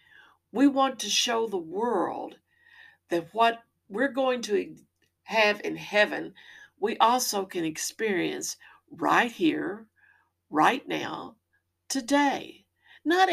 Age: 60-79